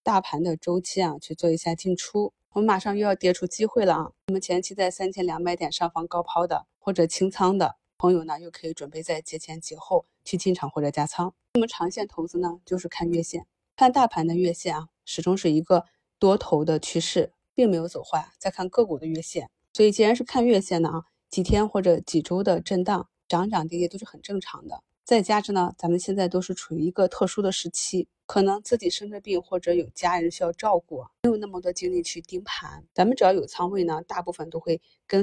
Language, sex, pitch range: Chinese, female, 170-200 Hz